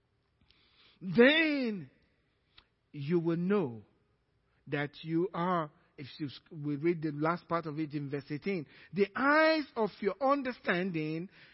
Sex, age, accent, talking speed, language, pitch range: male, 50-69, Nigerian, 120 wpm, English, 180-280 Hz